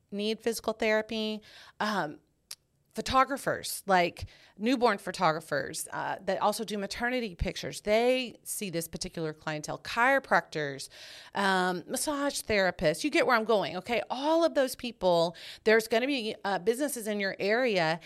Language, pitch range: English, 175-230 Hz